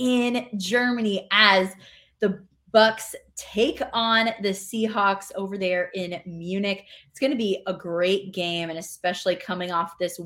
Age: 20-39